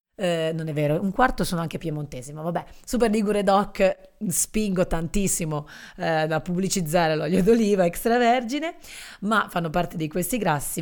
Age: 30-49